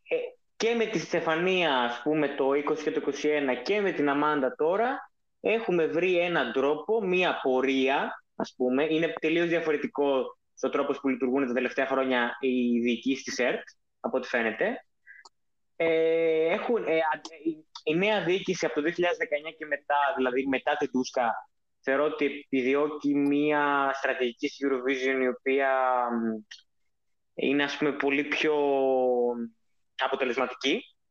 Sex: male